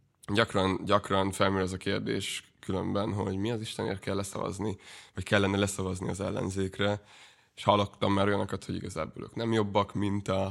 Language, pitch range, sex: Hungarian, 95-110 Hz, male